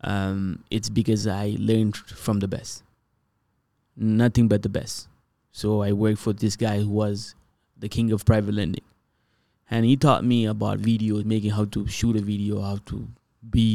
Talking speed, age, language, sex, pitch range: 175 wpm, 20-39, English, male, 105-120 Hz